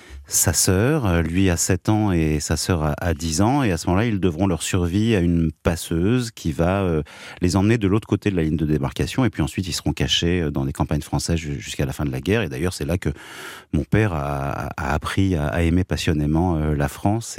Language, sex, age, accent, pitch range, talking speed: French, male, 30-49, French, 80-100 Hz, 235 wpm